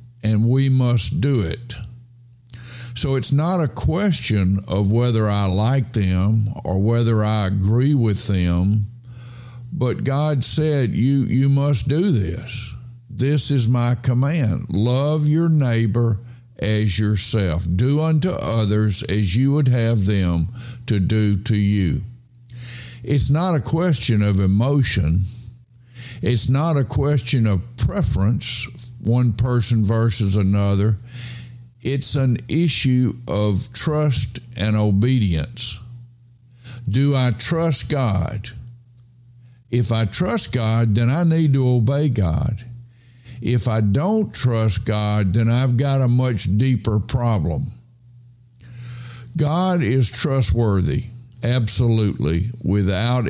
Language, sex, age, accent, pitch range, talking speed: English, male, 60-79, American, 110-125 Hz, 115 wpm